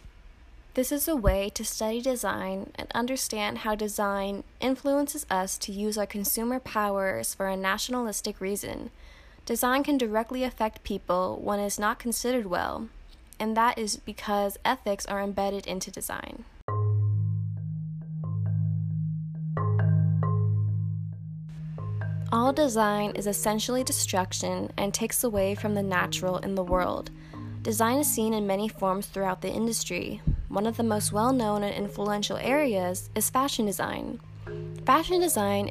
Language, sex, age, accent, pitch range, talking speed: English, female, 10-29, American, 150-220 Hz, 130 wpm